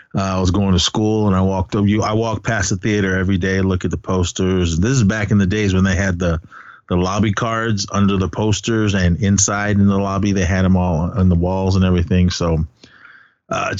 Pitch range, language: 95-115 Hz, English